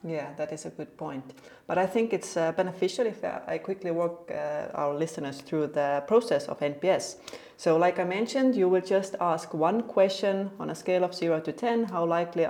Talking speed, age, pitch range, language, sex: 205 wpm, 30-49, 150-185 Hz, English, female